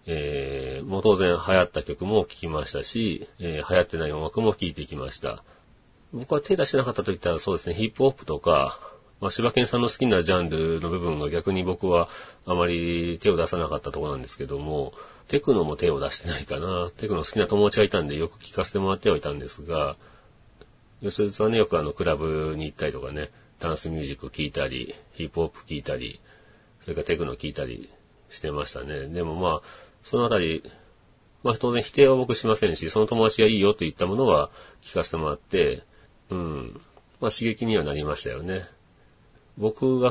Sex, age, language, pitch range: male, 40-59, Japanese, 80-110 Hz